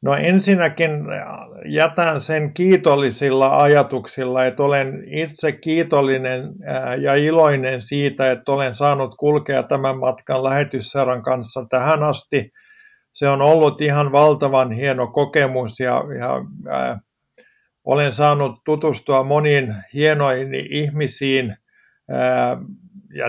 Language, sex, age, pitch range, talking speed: Finnish, male, 50-69, 130-150 Hz, 105 wpm